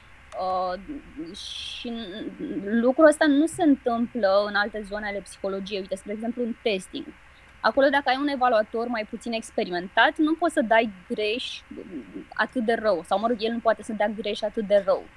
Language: Romanian